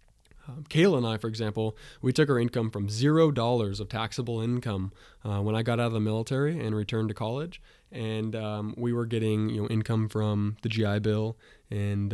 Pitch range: 105-115 Hz